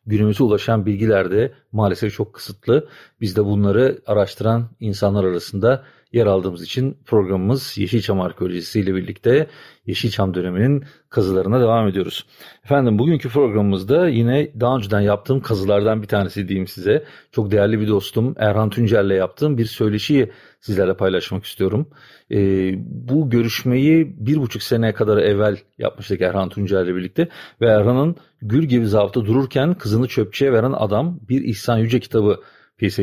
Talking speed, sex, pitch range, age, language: 135 wpm, male, 100-130 Hz, 40-59, Turkish